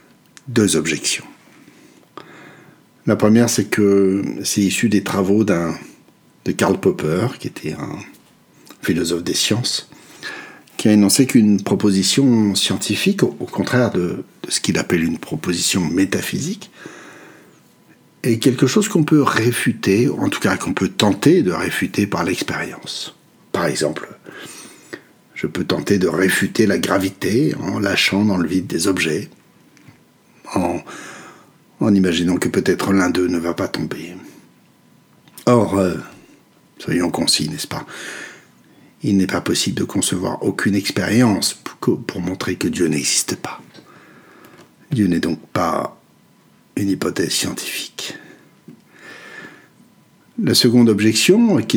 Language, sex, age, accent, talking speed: French, male, 60-79, French, 125 wpm